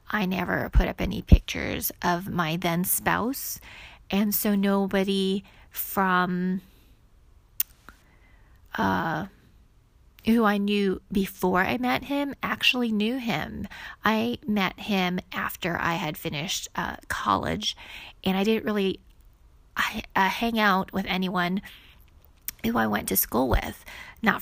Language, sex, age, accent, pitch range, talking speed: English, female, 30-49, American, 185-210 Hz, 125 wpm